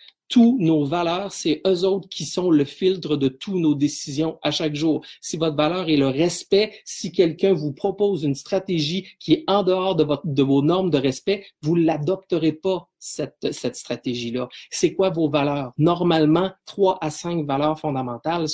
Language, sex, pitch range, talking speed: French, male, 150-180 Hz, 180 wpm